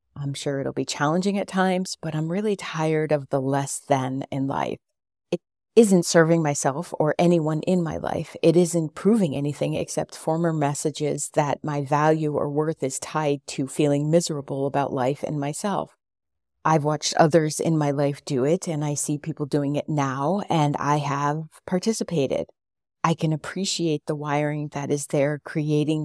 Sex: female